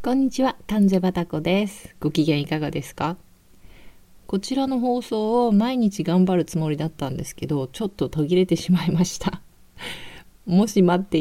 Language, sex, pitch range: Japanese, female, 155-195 Hz